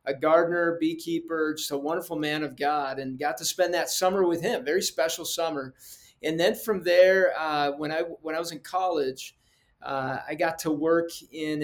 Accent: American